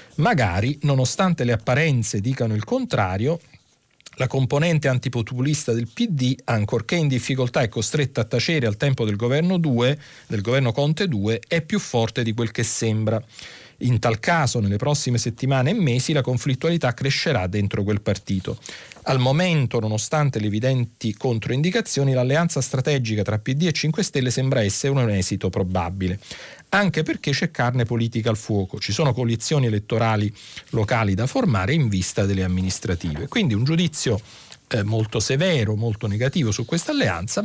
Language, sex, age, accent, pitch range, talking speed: Italian, male, 40-59, native, 110-145 Hz, 155 wpm